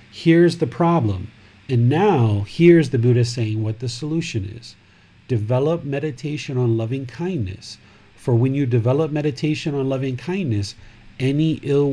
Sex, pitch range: male, 110-155 Hz